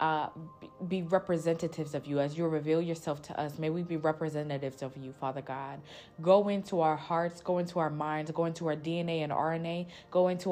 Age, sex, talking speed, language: 20-39, female, 200 wpm, English